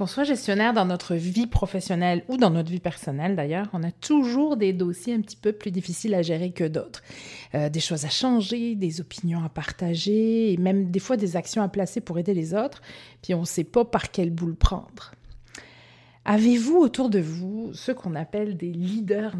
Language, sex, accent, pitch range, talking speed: French, female, French, 175-210 Hz, 205 wpm